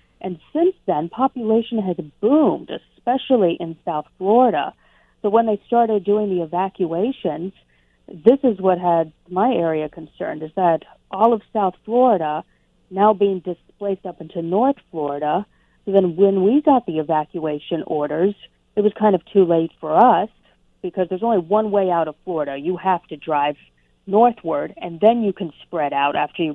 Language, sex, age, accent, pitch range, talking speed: English, female, 40-59, American, 170-215 Hz, 165 wpm